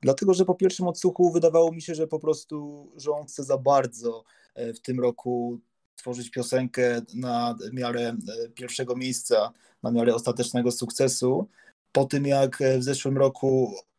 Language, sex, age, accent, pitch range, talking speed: Polish, male, 20-39, native, 125-150 Hz, 145 wpm